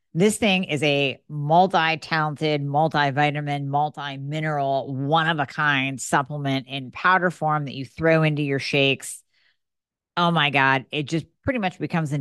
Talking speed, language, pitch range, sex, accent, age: 145 wpm, English, 145-190 Hz, female, American, 40-59